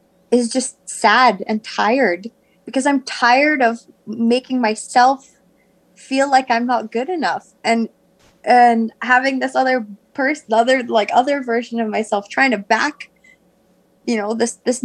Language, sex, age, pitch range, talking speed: English, female, 20-39, 220-265 Hz, 145 wpm